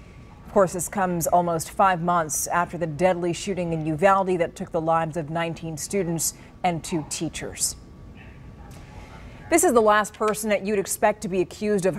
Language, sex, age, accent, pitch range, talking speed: English, female, 30-49, American, 180-225 Hz, 175 wpm